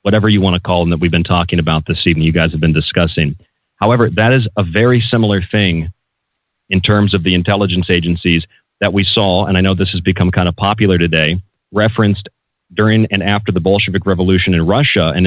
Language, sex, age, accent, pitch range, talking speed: English, male, 40-59, American, 90-105 Hz, 210 wpm